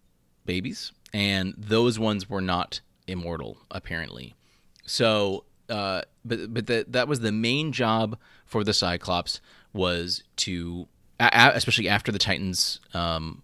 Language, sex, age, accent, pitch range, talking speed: English, male, 30-49, American, 90-115 Hz, 130 wpm